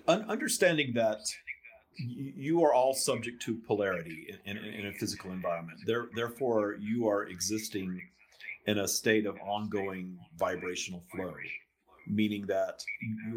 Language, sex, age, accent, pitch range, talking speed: English, male, 50-69, American, 95-110 Hz, 120 wpm